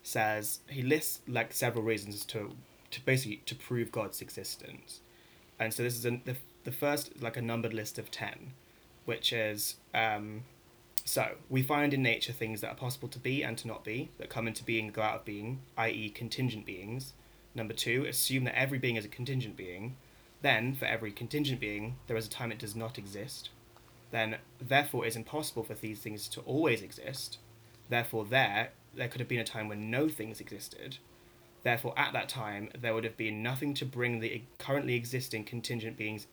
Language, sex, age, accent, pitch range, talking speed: English, male, 20-39, British, 110-130 Hz, 195 wpm